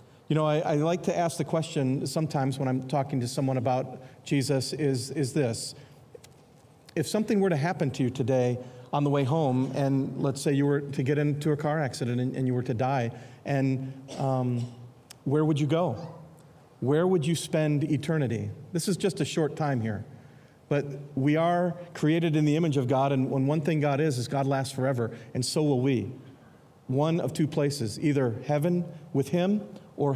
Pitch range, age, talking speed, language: 130-160 Hz, 40-59, 195 wpm, English